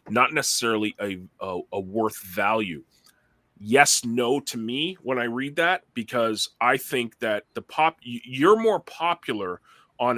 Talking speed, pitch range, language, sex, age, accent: 145 wpm, 115-165 Hz, English, male, 30-49, American